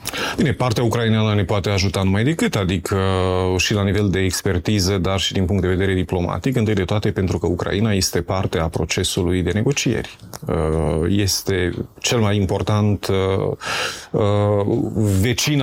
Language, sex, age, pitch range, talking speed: Romanian, male, 30-49, 95-120 Hz, 145 wpm